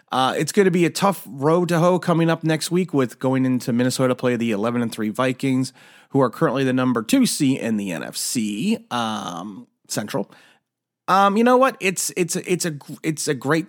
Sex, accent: male, American